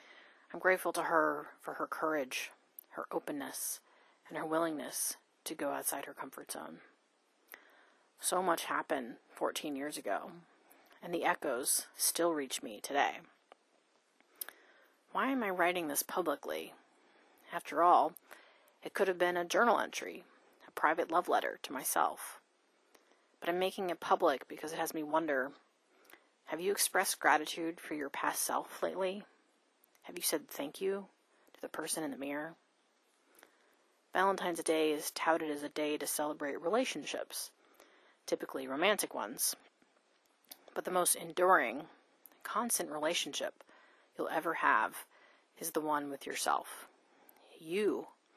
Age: 30-49